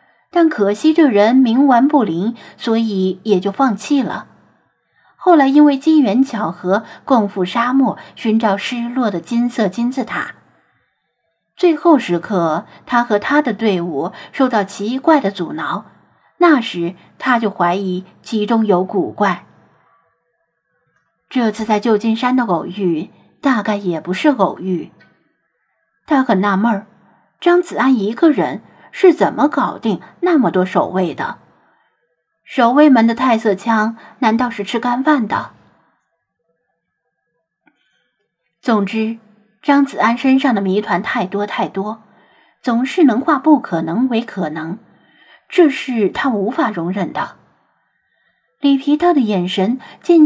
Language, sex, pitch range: Chinese, female, 200-275 Hz